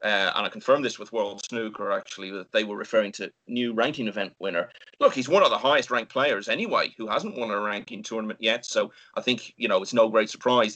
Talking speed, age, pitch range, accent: 240 wpm, 30-49, 110-175 Hz, British